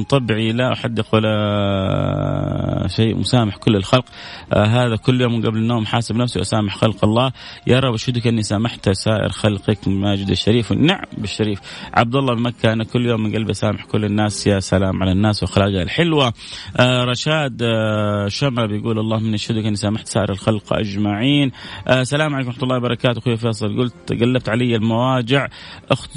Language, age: Arabic, 30-49